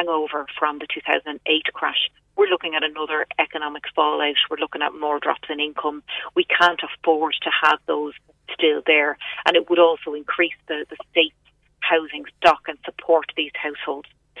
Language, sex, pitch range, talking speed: English, female, 155-175 Hz, 165 wpm